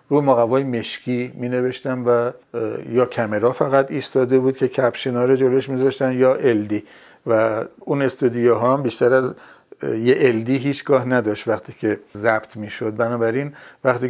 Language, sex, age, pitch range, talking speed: Persian, male, 50-69, 115-135 Hz, 145 wpm